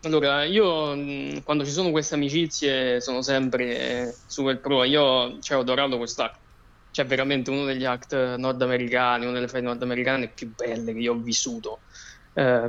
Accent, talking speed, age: native, 160 wpm, 20-39